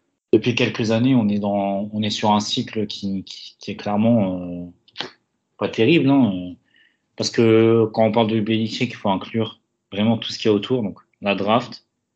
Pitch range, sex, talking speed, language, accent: 105-115 Hz, male, 195 wpm, French, French